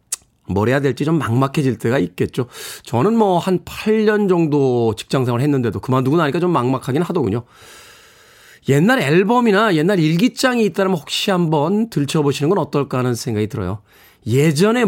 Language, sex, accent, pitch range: Korean, male, native, 120-185 Hz